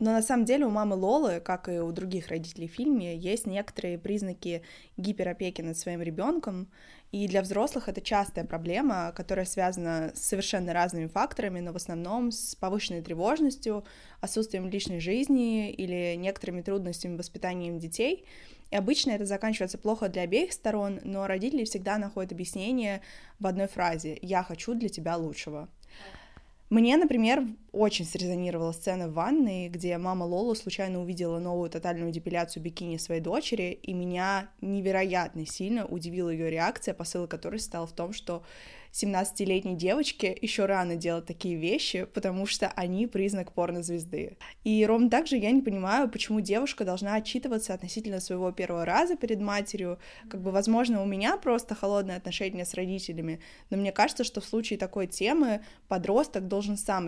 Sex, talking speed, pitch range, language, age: female, 155 wpm, 180-215 Hz, Russian, 20-39